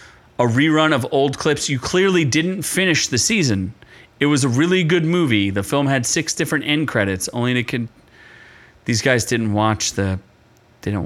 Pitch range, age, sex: 115-170 Hz, 30-49, male